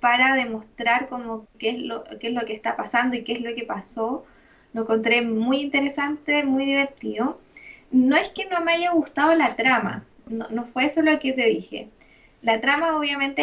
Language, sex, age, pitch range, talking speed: Spanish, female, 20-39, 230-290 Hz, 195 wpm